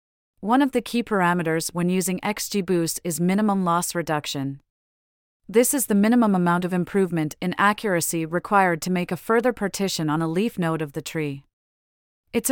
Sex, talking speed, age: female, 170 wpm, 30-49